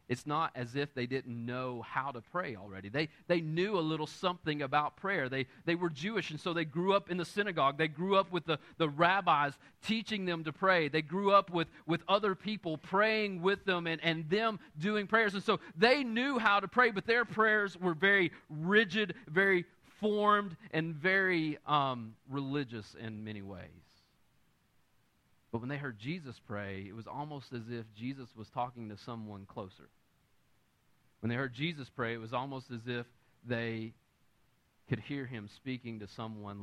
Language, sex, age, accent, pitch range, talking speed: English, male, 40-59, American, 120-175 Hz, 185 wpm